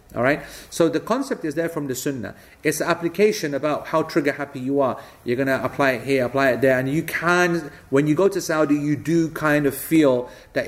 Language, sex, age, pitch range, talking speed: English, male, 30-49, 125-155 Hz, 235 wpm